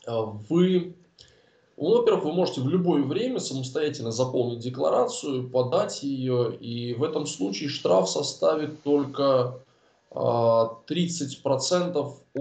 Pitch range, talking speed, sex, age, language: 130-185 Hz, 95 wpm, male, 20-39, Russian